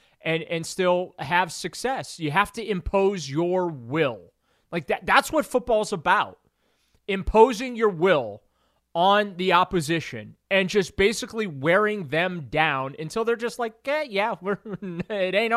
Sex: male